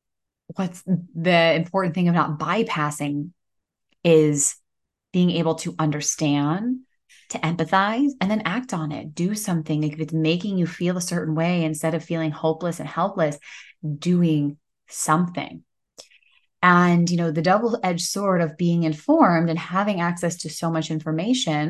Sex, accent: female, American